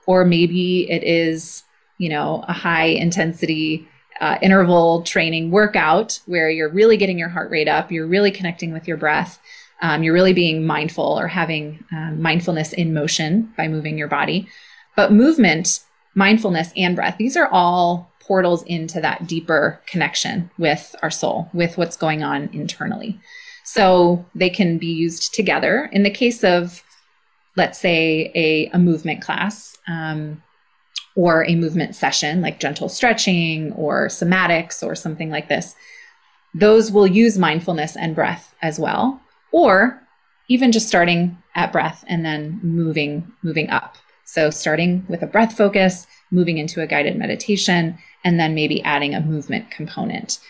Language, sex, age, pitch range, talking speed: English, female, 30-49, 160-200 Hz, 155 wpm